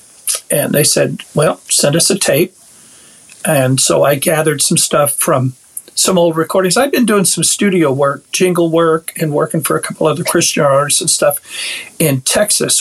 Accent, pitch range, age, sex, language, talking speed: American, 145-185 Hz, 50-69, male, English, 180 wpm